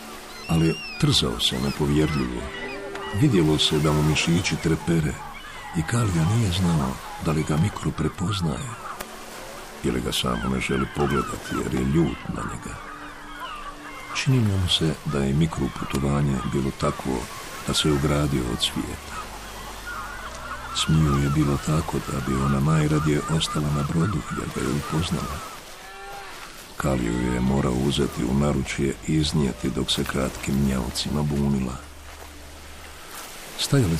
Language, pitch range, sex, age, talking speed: Croatian, 70-80 Hz, male, 60-79, 125 wpm